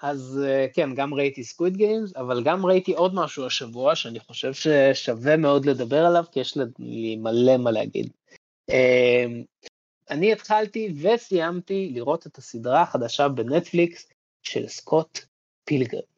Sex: male